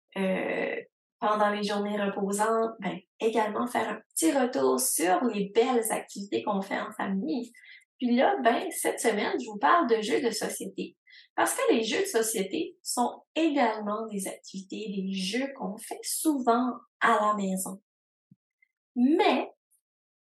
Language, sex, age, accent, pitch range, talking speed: French, female, 20-39, Canadian, 200-265 Hz, 150 wpm